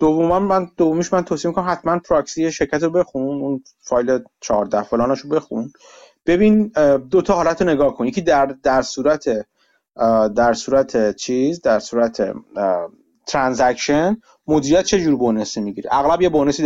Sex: male